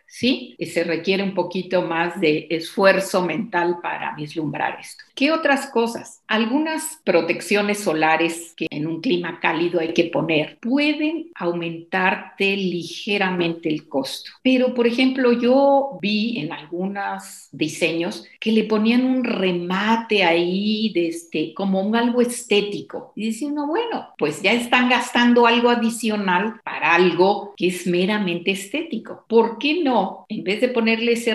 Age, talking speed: 50-69, 145 wpm